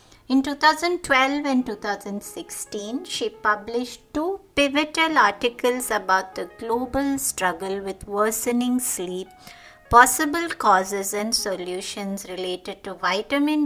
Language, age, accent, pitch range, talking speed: English, 60-79, Indian, 205-275 Hz, 100 wpm